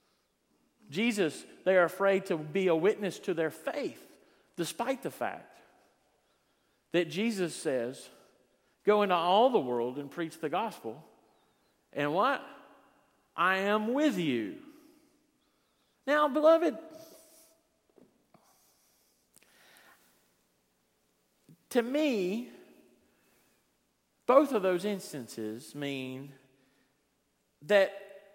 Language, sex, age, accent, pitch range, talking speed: English, male, 50-69, American, 145-235 Hz, 90 wpm